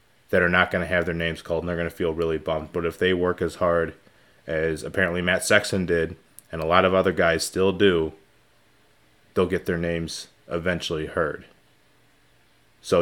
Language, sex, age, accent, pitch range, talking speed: English, male, 20-39, American, 85-100 Hz, 195 wpm